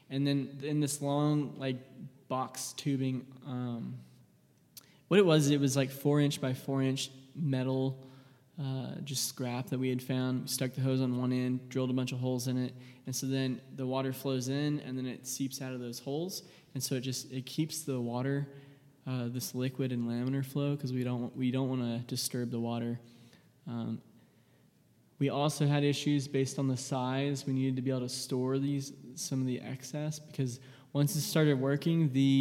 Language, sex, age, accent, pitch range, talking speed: English, male, 20-39, American, 130-140 Hz, 195 wpm